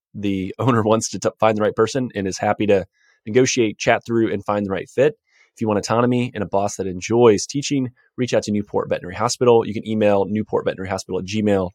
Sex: male